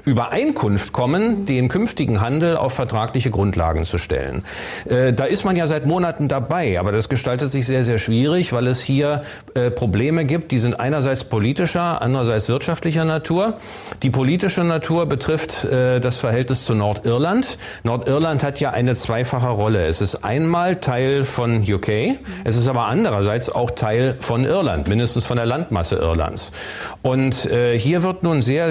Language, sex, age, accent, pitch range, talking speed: German, male, 40-59, German, 115-150 Hz, 165 wpm